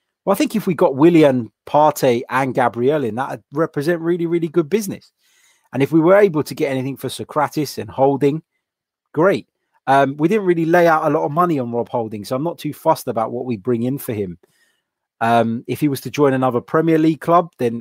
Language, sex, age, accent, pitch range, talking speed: English, male, 30-49, British, 115-145 Hz, 225 wpm